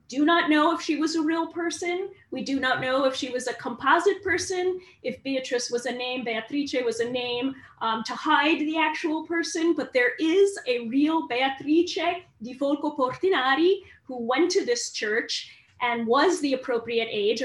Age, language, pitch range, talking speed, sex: 30-49, English, 235-310 Hz, 180 wpm, female